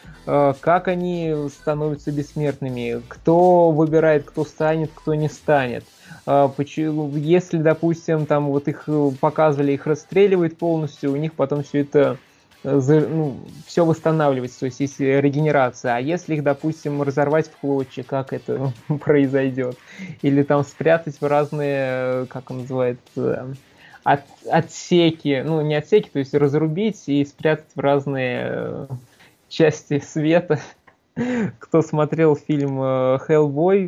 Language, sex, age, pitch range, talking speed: Russian, male, 20-39, 135-155 Hz, 120 wpm